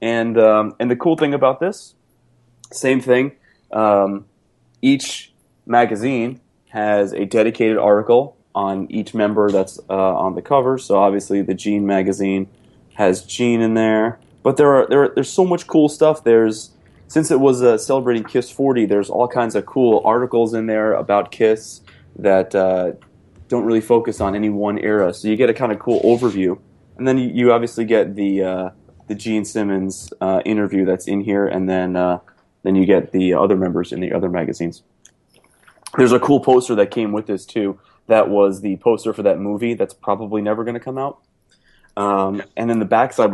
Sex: male